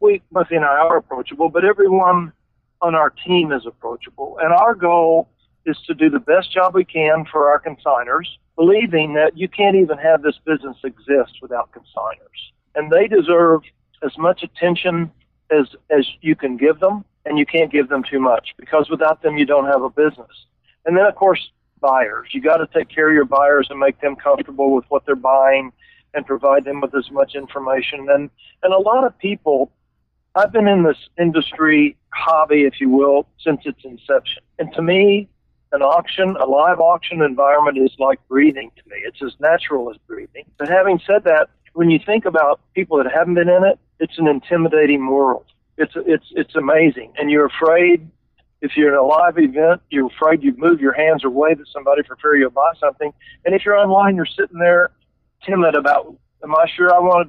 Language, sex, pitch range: English, male, 140-180 Hz